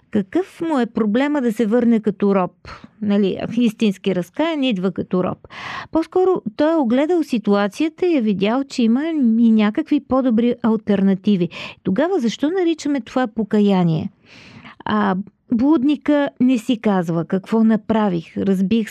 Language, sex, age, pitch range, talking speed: Bulgarian, female, 50-69, 205-260 Hz, 135 wpm